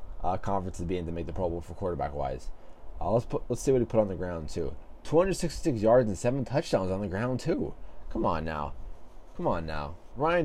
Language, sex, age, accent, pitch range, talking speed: English, male, 20-39, American, 90-115 Hz, 220 wpm